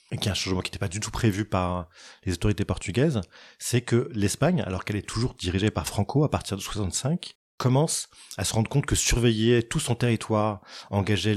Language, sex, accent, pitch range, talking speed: French, male, French, 95-115 Hz, 205 wpm